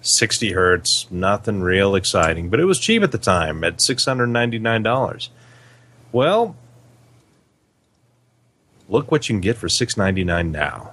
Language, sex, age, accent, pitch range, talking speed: English, male, 30-49, American, 100-125 Hz, 125 wpm